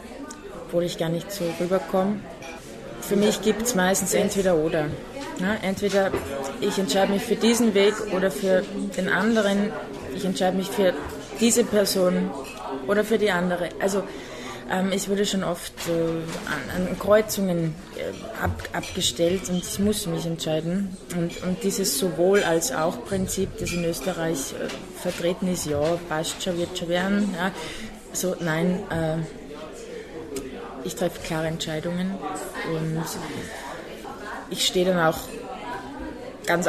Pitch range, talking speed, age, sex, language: 170-195 Hz, 135 wpm, 20-39, female, German